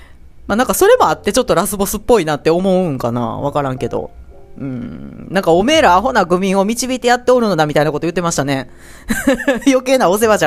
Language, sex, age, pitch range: Japanese, female, 40-59, 145-215 Hz